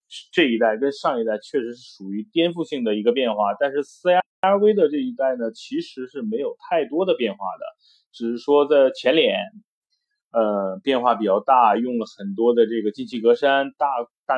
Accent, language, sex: native, Chinese, male